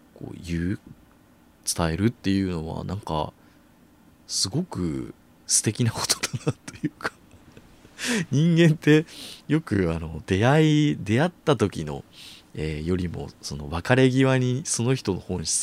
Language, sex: Japanese, male